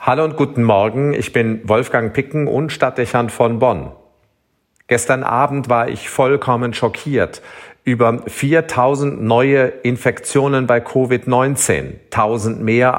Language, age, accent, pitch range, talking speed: German, 40-59, German, 110-140 Hz, 120 wpm